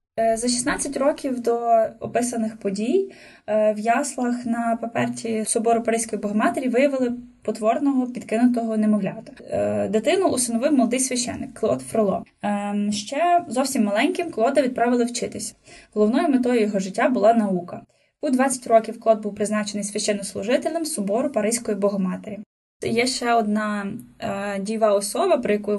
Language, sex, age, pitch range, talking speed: Ukrainian, female, 10-29, 210-265 Hz, 125 wpm